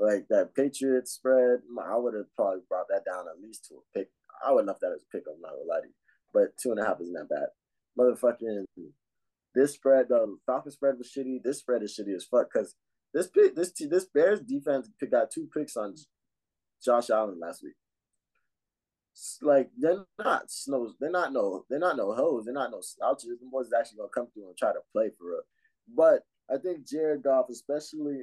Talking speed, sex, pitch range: 215 wpm, male, 120-180 Hz